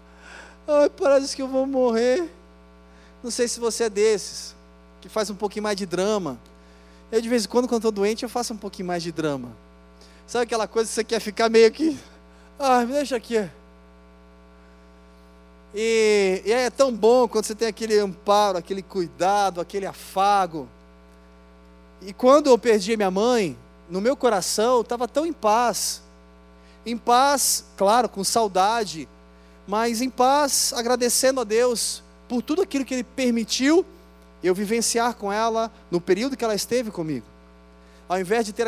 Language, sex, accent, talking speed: Portuguese, male, Brazilian, 165 wpm